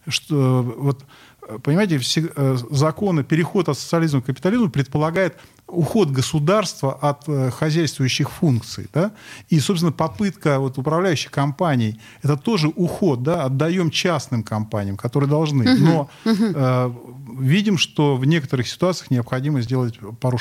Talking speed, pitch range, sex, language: 130 wpm, 120-150 Hz, male, Russian